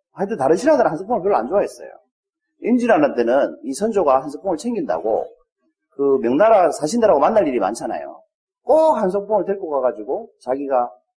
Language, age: Korean, 40-59